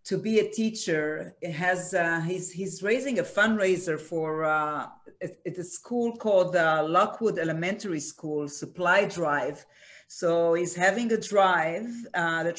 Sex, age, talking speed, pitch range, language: female, 40-59, 150 wpm, 160-190 Hz, Hebrew